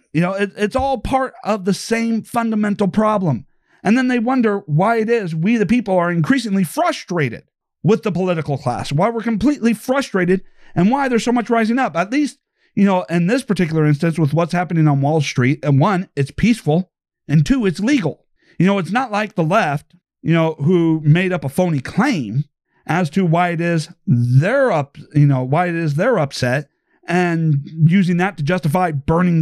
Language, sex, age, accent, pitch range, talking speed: English, male, 40-59, American, 155-210 Hz, 195 wpm